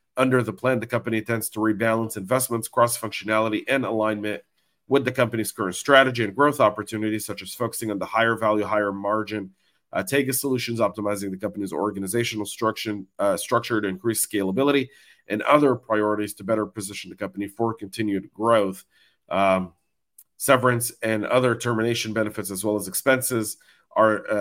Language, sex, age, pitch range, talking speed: English, male, 40-59, 105-120 Hz, 160 wpm